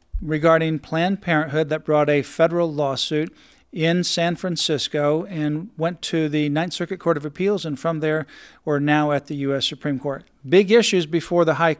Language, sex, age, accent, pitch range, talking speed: English, male, 50-69, American, 145-170 Hz, 180 wpm